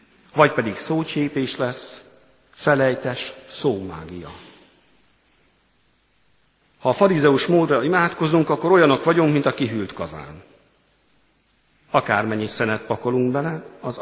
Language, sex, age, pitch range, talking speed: Hungarian, male, 50-69, 110-155 Hz, 100 wpm